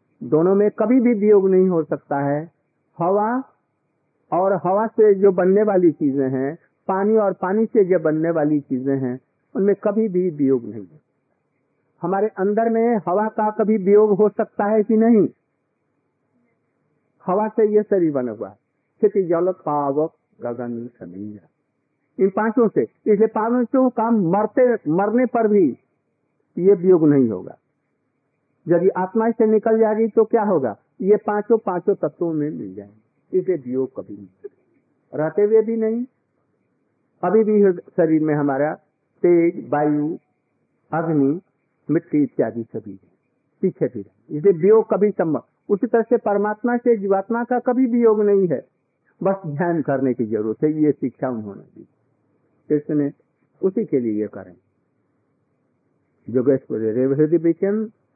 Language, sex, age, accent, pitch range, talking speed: Hindi, male, 50-69, native, 145-215 Hz, 140 wpm